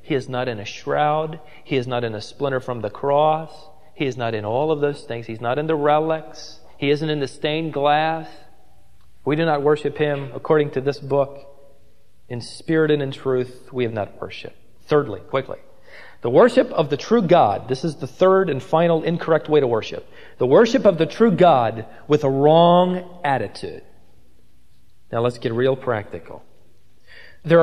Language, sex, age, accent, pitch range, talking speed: English, male, 40-59, American, 130-175 Hz, 185 wpm